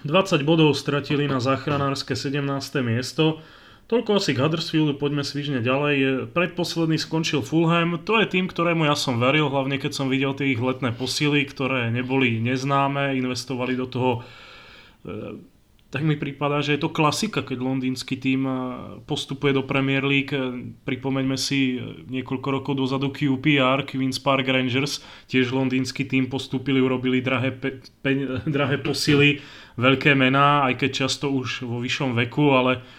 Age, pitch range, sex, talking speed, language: 30-49, 130-145 Hz, male, 145 wpm, Slovak